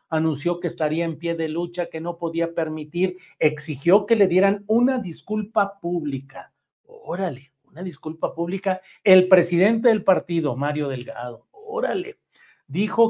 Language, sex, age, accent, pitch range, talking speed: Spanish, male, 50-69, Mexican, 140-185 Hz, 135 wpm